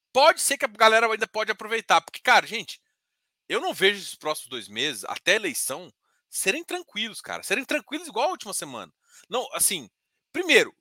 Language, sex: Portuguese, male